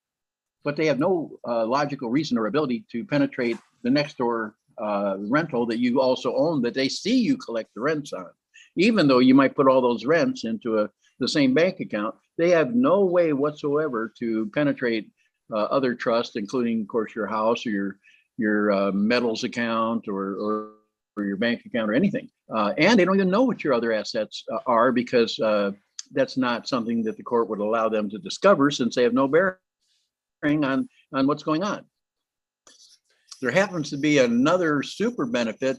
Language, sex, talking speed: English, male, 190 wpm